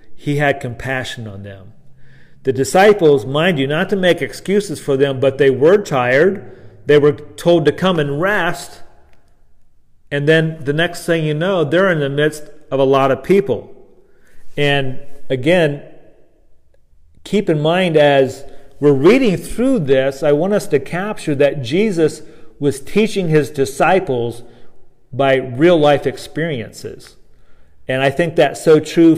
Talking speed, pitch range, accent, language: 150 wpm, 135-155 Hz, American, English